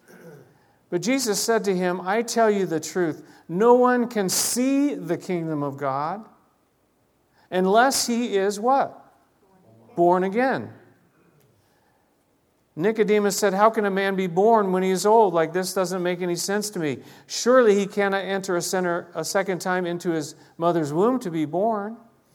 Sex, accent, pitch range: male, American, 170-220 Hz